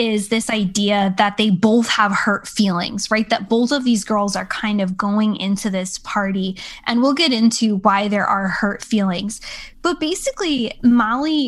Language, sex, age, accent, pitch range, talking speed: English, female, 10-29, American, 205-235 Hz, 180 wpm